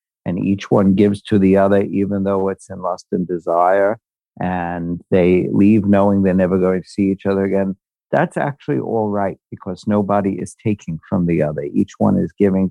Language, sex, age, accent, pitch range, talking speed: English, male, 50-69, American, 90-105 Hz, 195 wpm